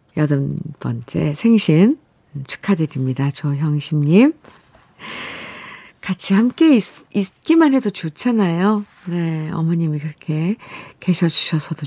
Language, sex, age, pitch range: Korean, female, 50-69, 165-230 Hz